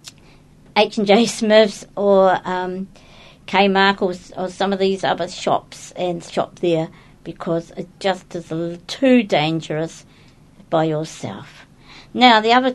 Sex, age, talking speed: female, 50-69, 130 wpm